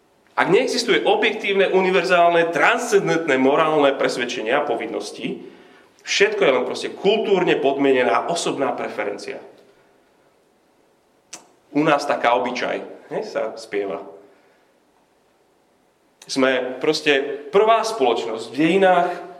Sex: male